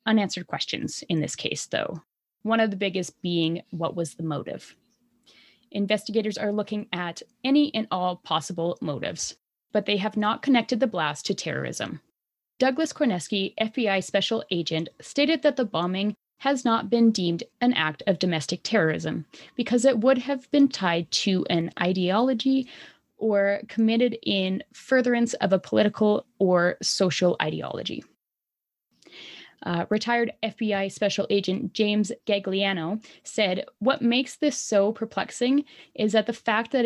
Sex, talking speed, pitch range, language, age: female, 145 wpm, 190-245 Hz, English, 20-39